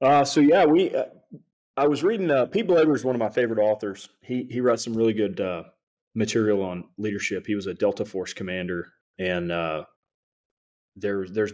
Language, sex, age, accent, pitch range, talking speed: English, male, 30-49, American, 100-140 Hz, 190 wpm